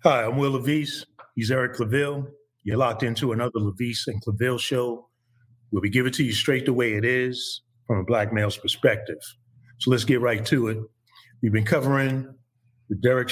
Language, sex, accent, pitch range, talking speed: English, male, American, 115-130 Hz, 190 wpm